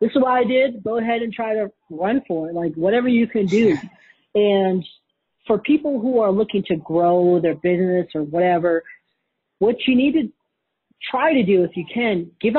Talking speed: 195 wpm